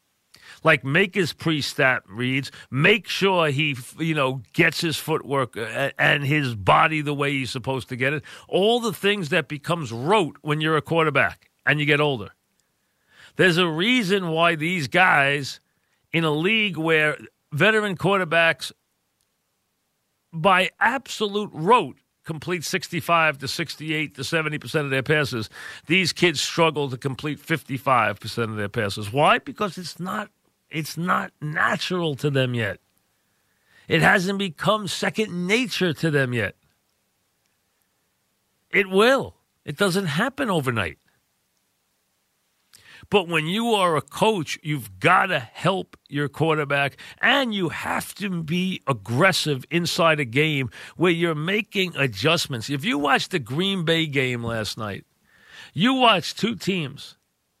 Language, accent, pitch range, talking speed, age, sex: English, American, 135-185 Hz, 140 wpm, 40-59, male